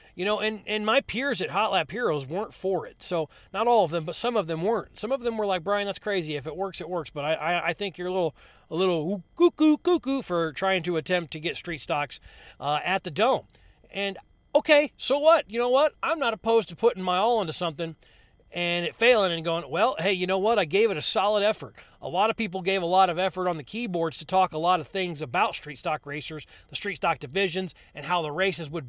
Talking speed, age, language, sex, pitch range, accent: 255 wpm, 30-49, English, male, 170-230 Hz, American